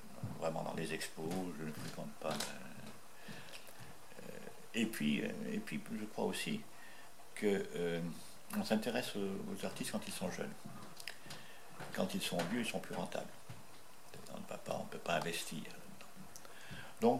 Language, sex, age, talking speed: French, male, 60-79, 140 wpm